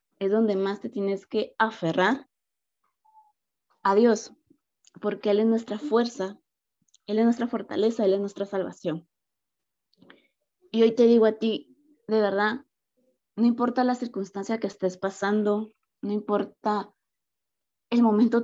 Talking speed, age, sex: 135 wpm, 20-39, female